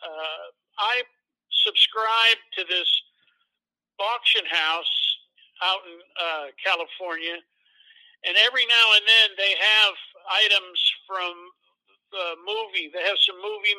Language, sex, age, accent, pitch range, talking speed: English, male, 50-69, American, 185-265 Hz, 115 wpm